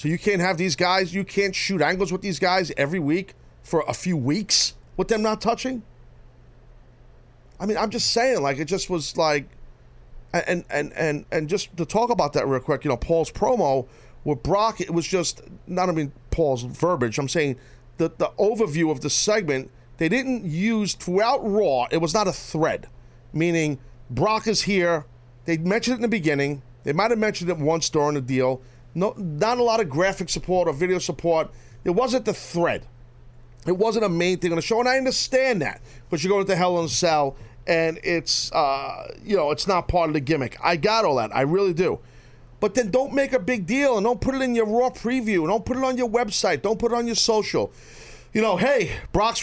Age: 40-59